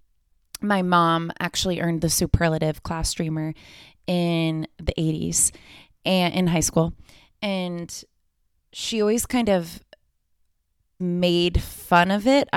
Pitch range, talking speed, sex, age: 155-185 Hz, 115 wpm, female, 20-39